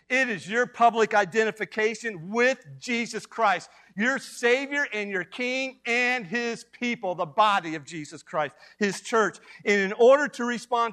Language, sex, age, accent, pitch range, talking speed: English, male, 50-69, American, 150-245 Hz, 155 wpm